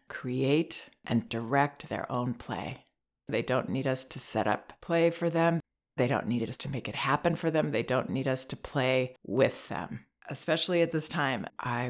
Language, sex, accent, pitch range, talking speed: English, female, American, 130-170 Hz, 195 wpm